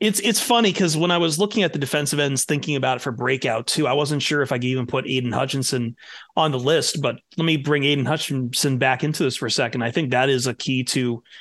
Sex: male